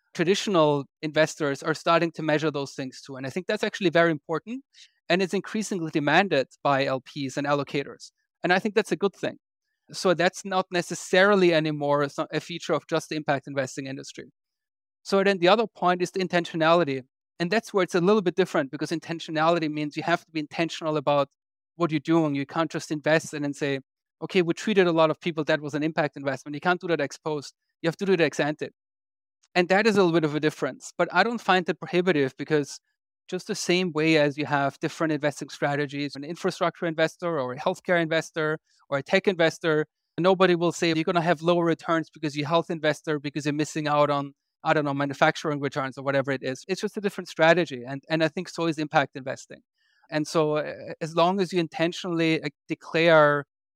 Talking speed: 215 wpm